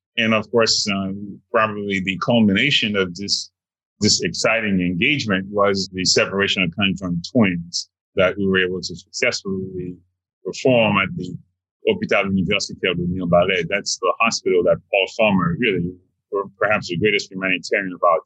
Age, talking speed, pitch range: 30-49, 150 wpm, 90-100 Hz